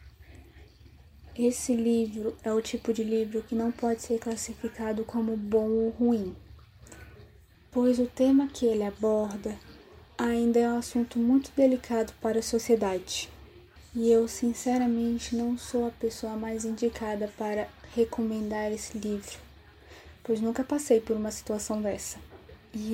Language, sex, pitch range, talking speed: Portuguese, female, 215-235 Hz, 135 wpm